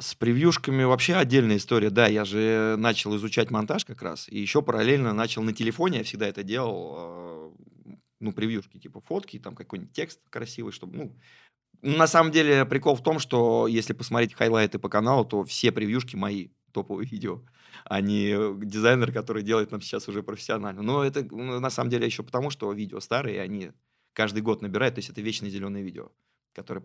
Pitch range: 105-130 Hz